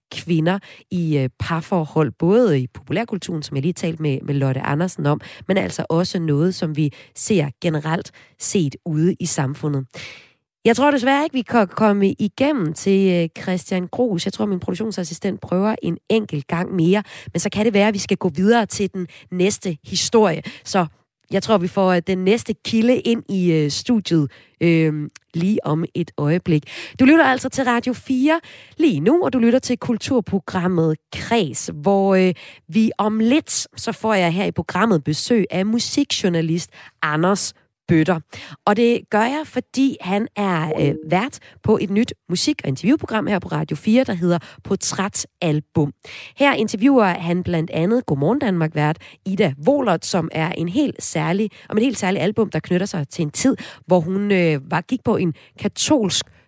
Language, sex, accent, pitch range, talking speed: Danish, female, native, 160-215 Hz, 170 wpm